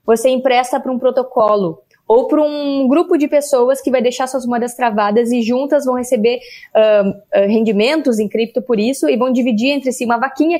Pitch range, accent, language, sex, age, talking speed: 230-280 Hz, Brazilian, Portuguese, female, 20-39, 185 wpm